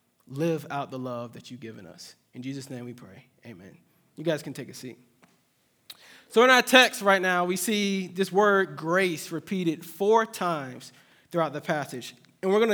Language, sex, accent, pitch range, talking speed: English, male, American, 150-200 Hz, 190 wpm